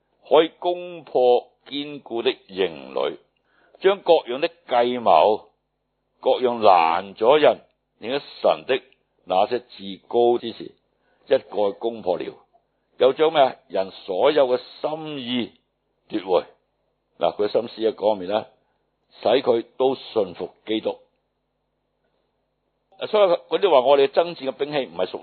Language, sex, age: Chinese, male, 60-79